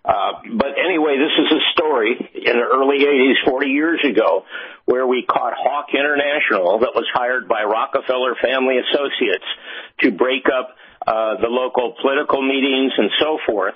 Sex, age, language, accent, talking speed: male, 50-69, English, American, 160 wpm